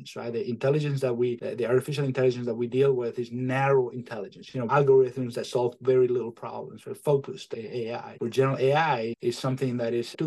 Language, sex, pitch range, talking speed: English, male, 120-135 Hz, 200 wpm